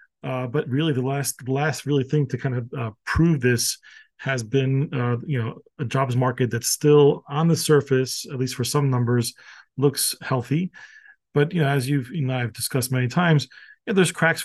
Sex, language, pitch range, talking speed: male, English, 125-150 Hz, 200 wpm